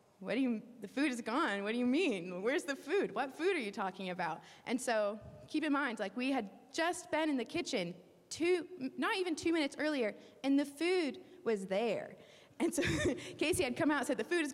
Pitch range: 210-290 Hz